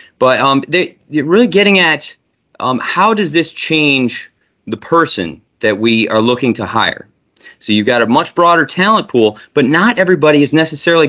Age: 20-39